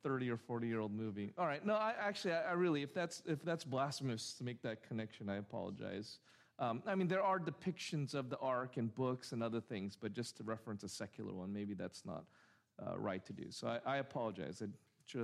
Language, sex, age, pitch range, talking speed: English, male, 40-59, 140-210 Hz, 225 wpm